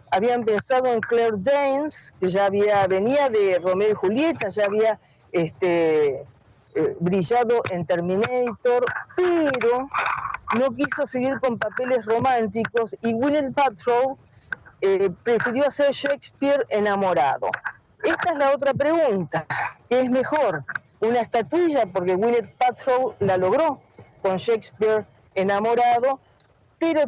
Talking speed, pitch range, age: 115 wpm, 200-270 Hz, 40-59